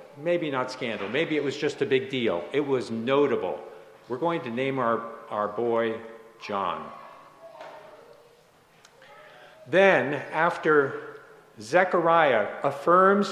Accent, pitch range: American, 130-180 Hz